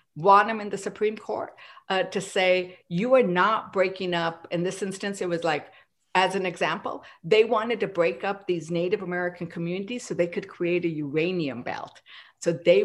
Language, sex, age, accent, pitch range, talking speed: English, female, 50-69, American, 170-220 Hz, 190 wpm